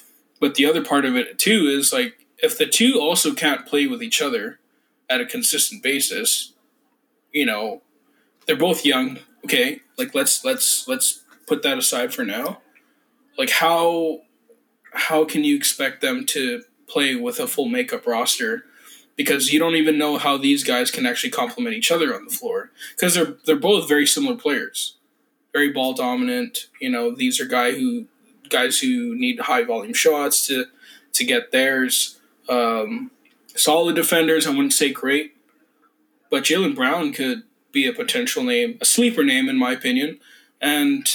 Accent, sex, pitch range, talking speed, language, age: American, male, 160-260 Hz, 170 wpm, English, 20-39